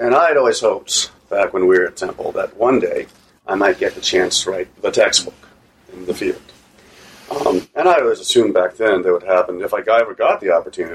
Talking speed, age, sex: 235 wpm, 40-59, male